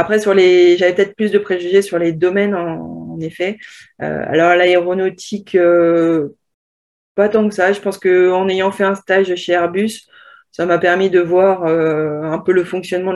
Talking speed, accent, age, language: 185 wpm, French, 20-39, French